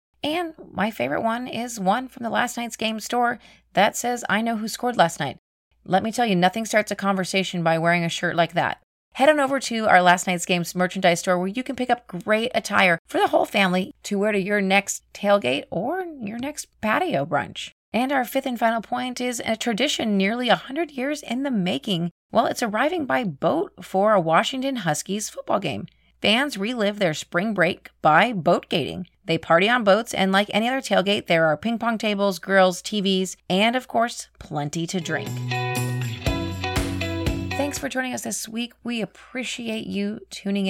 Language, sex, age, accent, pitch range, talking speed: English, female, 30-49, American, 180-250 Hz, 195 wpm